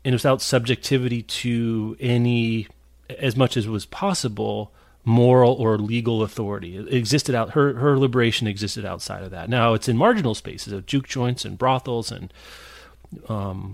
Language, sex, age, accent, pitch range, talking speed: English, male, 30-49, American, 105-135 Hz, 155 wpm